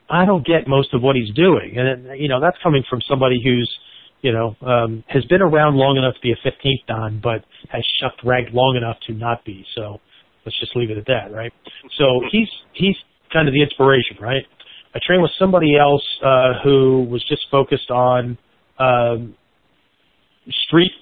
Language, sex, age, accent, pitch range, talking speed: English, male, 40-59, American, 120-145 Hz, 190 wpm